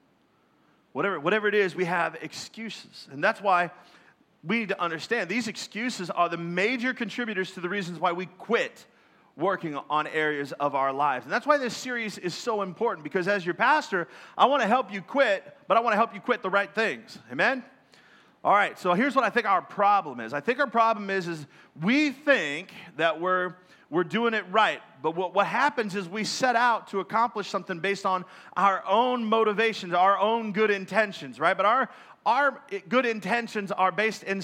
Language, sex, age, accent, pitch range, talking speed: English, male, 30-49, American, 180-230 Hz, 200 wpm